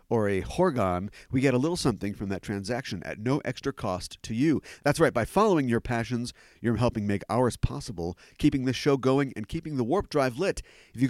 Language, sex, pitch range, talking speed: English, male, 100-145 Hz, 215 wpm